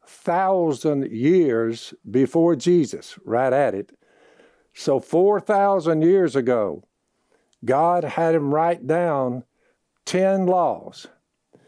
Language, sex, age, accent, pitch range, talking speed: English, male, 60-79, American, 150-180 Hz, 100 wpm